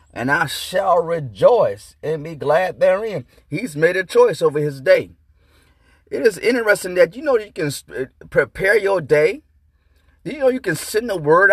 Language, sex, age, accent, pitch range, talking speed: English, male, 30-49, American, 165-260 Hz, 170 wpm